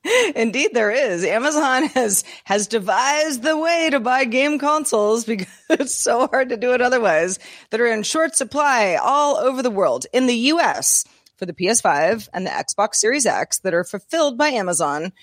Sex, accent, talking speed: female, American, 180 wpm